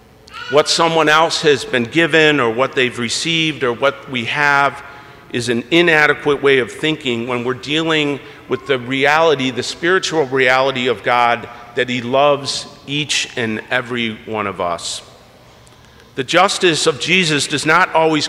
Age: 50-69